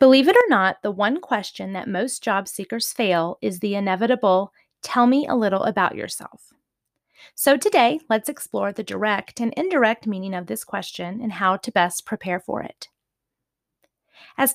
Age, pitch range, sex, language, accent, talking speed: 30-49, 190-260 Hz, female, English, American, 170 wpm